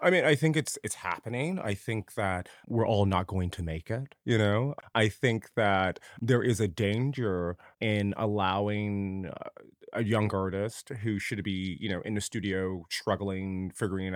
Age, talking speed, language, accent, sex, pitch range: 30-49, 175 wpm, English, American, male, 100-130 Hz